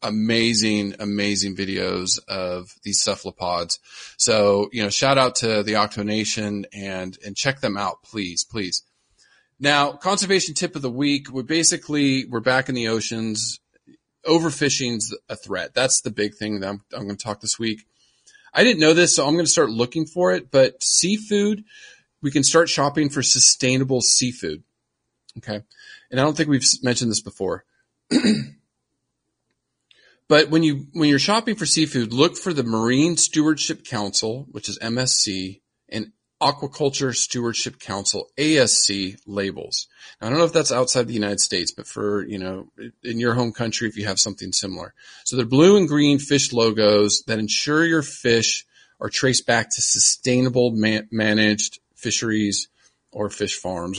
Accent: American